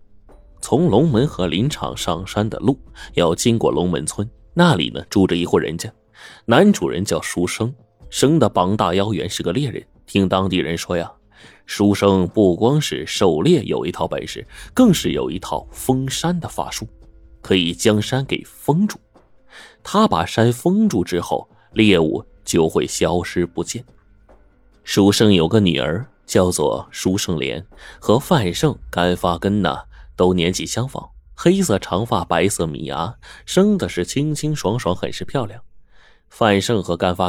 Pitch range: 90-120 Hz